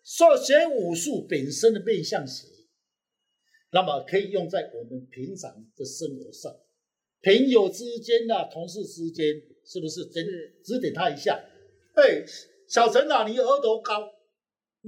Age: 50-69